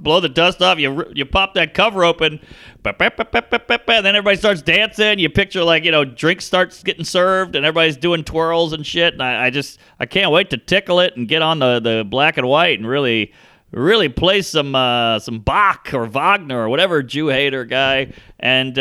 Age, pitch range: 40-59, 140-205 Hz